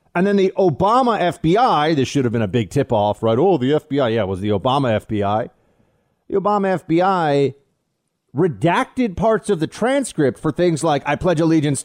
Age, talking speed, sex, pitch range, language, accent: 30-49, 185 wpm, male, 115-170 Hz, English, American